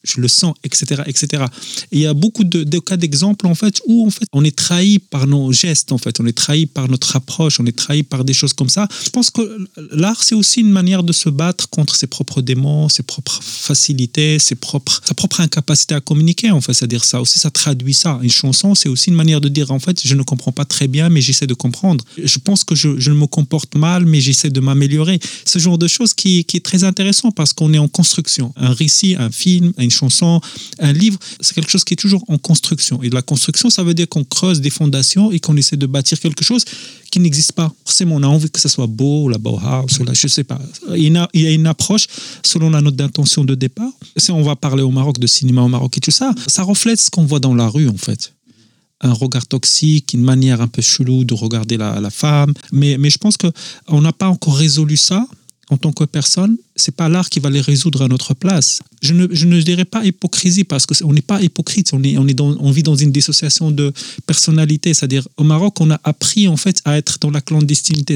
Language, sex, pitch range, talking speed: Arabic, male, 135-175 Hz, 250 wpm